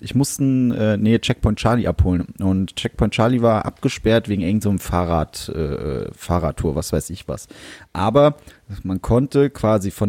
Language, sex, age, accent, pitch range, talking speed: German, male, 30-49, German, 105-170 Hz, 135 wpm